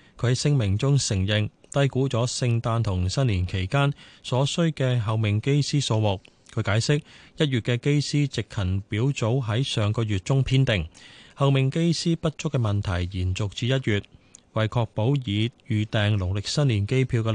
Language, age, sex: Chinese, 20-39, male